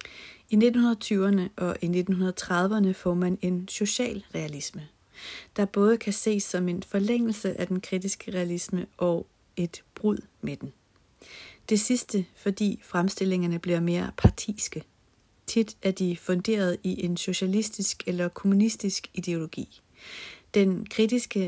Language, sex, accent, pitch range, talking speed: Danish, female, native, 175-205 Hz, 125 wpm